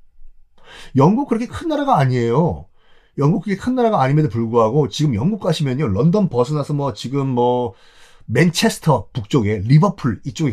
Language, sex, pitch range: Korean, male, 125-190 Hz